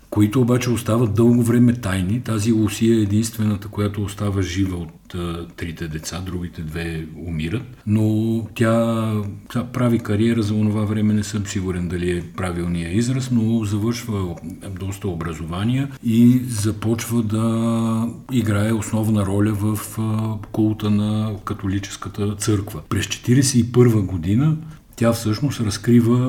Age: 50-69